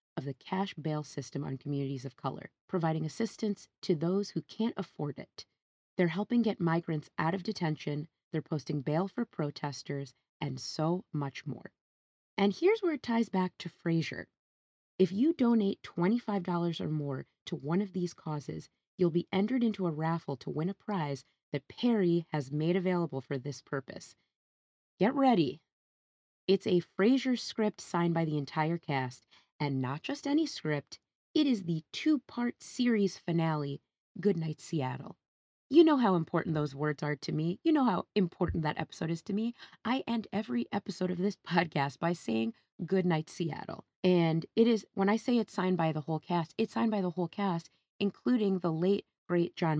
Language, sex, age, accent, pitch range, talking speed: English, female, 30-49, American, 150-200 Hz, 175 wpm